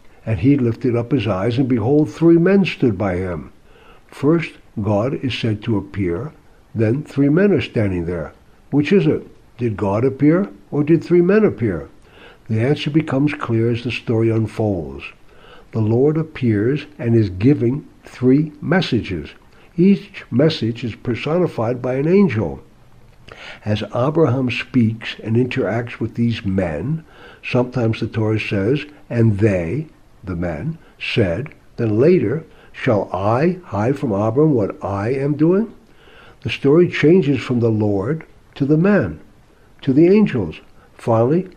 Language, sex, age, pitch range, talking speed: English, male, 60-79, 110-150 Hz, 145 wpm